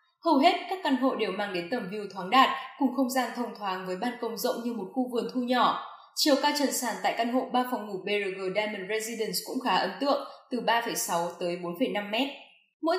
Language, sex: Vietnamese, female